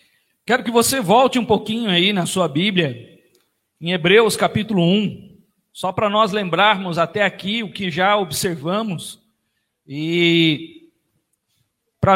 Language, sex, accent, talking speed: Portuguese, male, Brazilian, 130 wpm